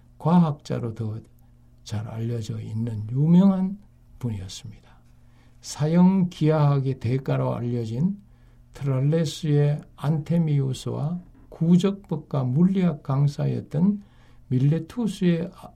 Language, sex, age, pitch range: Korean, male, 60-79, 115-155 Hz